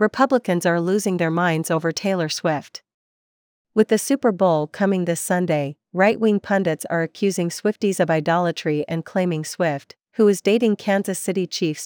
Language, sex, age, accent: English, female, 40-59, American